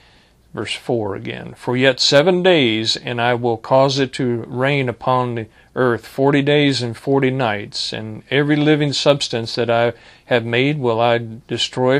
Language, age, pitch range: English, 50-69, 120-145 Hz